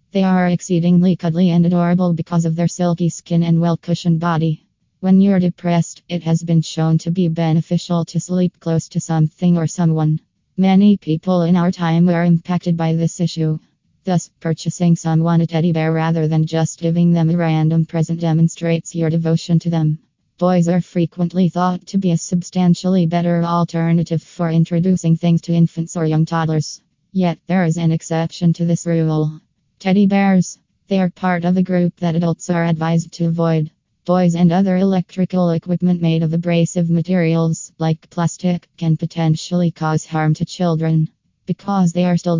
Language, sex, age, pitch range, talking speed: English, female, 20-39, 165-180 Hz, 170 wpm